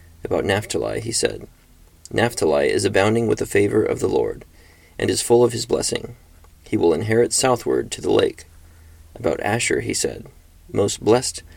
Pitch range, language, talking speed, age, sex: 80-120 Hz, English, 165 wpm, 30-49, male